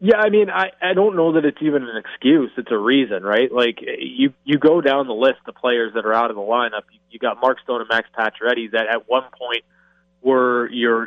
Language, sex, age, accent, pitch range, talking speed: English, male, 20-39, American, 120-145 Hz, 245 wpm